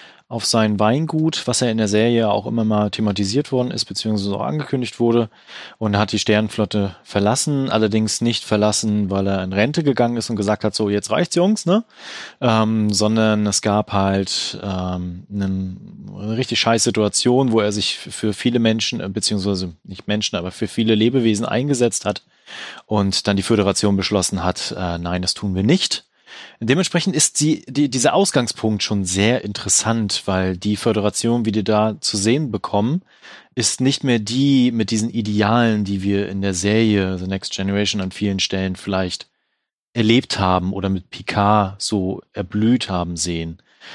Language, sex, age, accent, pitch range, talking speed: German, male, 30-49, German, 100-120 Hz, 170 wpm